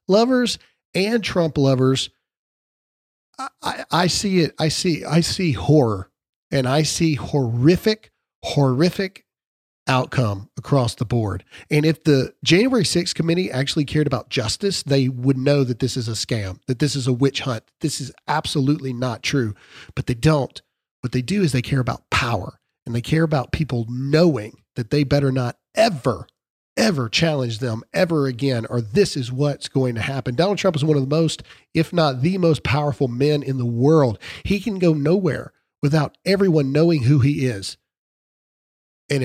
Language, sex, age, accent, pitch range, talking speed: English, male, 40-59, American, 125-165 Hz, 175 wpm